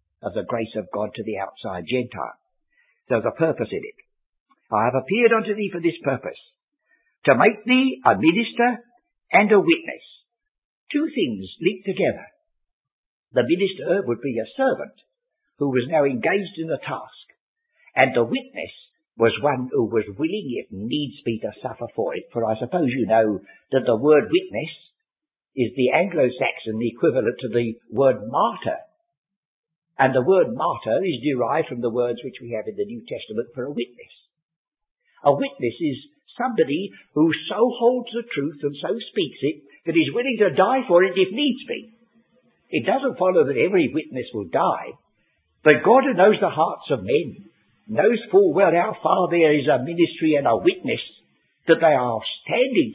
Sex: male